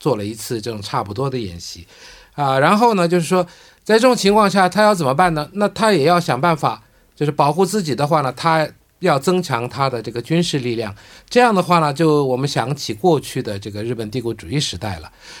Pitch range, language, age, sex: 120-170 Hz, Korean, 50-69, male